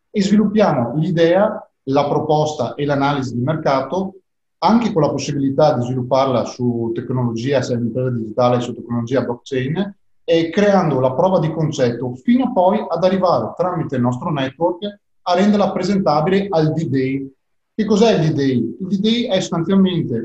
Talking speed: 150 wpm